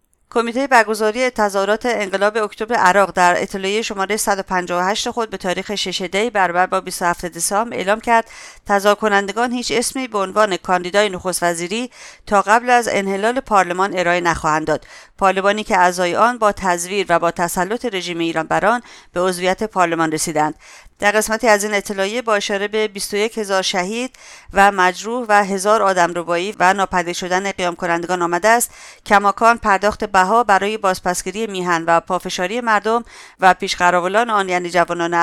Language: English